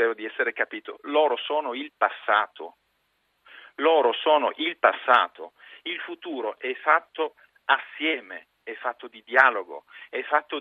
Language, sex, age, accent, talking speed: Italian, male, 50-69, native, 125 wpm